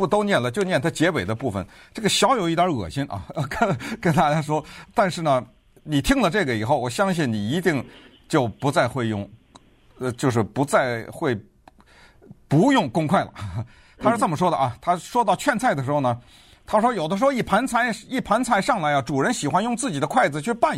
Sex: male